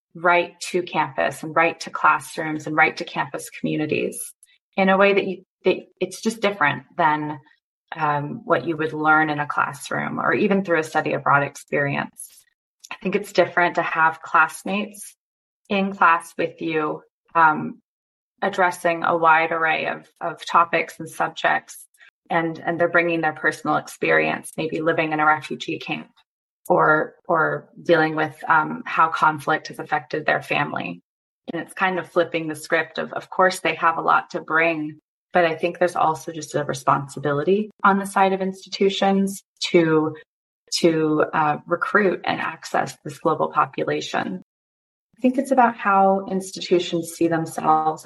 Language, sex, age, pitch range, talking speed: English, female, 20-39, 155-190 Hz, 160 wpm